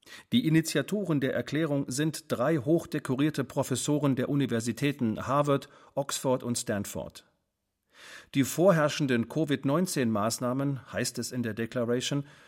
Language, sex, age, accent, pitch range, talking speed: German, male, 50-69, German, 115-150 Hz, 105 wpm